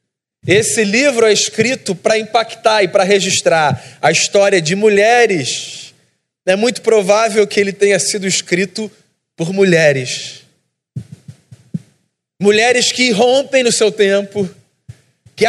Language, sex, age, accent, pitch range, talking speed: Portuguese, male, 20-39, Brazilian, 190-235 Hz, 115 wpm